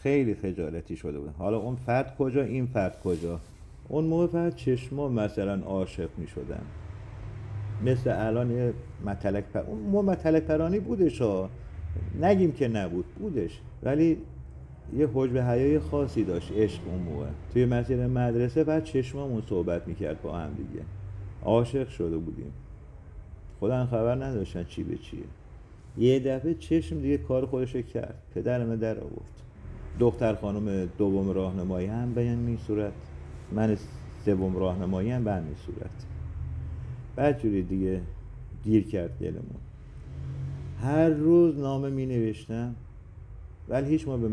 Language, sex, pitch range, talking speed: Persian, male, 90-130 Hz, 135 wpm